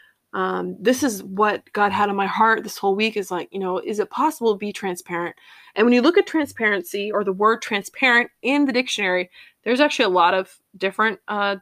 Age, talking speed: 20-39, 215 wpm